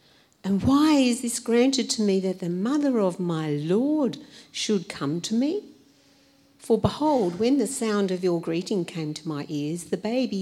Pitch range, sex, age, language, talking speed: 155-210 Hz, female, 50-69, English, 180 wpm